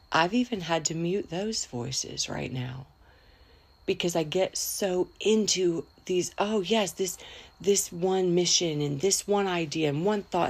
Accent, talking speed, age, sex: American, 160 wpm, 40-59, female